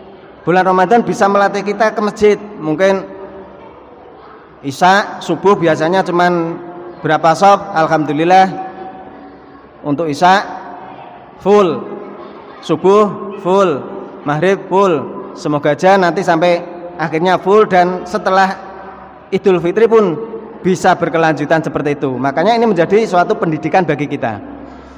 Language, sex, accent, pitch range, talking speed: Indonesian, male, native, 160-200 Hz, 105 wpm